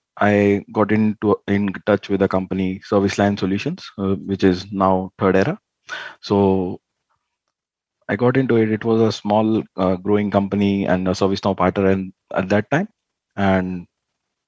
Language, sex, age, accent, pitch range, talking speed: English, male, 20-39, Indian, 95-110 Hz, 160 wpm